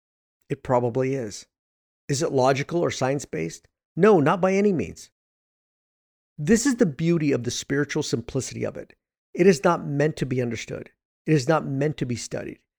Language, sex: English, male